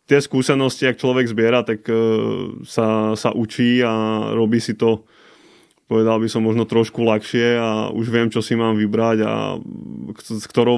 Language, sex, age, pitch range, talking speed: Slovak, male, 20-39, 110-115 Hz, 160 wpm